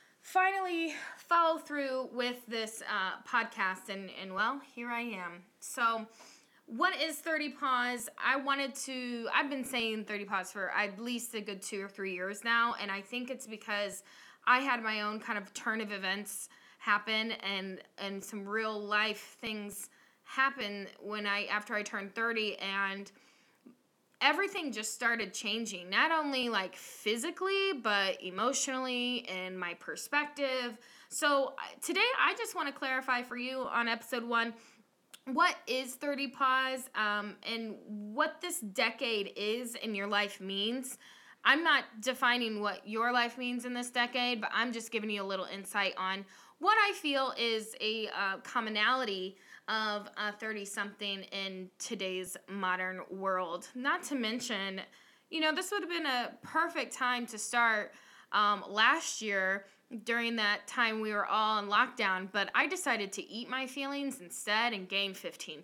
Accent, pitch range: American, 205-260 Hz